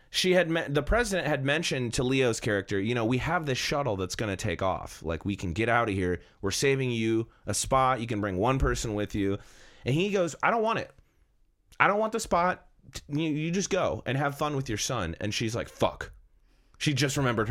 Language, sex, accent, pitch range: English, male, American, 105-145 Hz